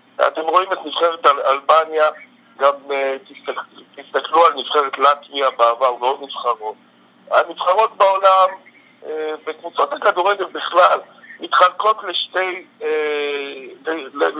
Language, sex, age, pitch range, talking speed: Hebrew, male, 50-69, 145-205 Hz, 95 wpm